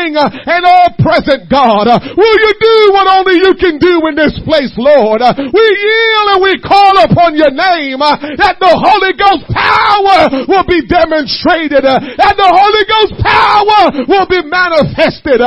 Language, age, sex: English, 40-59, male